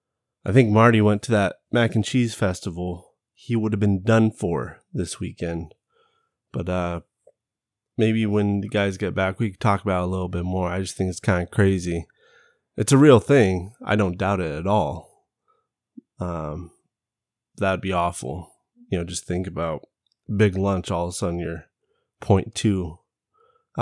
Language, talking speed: English, 175 wpm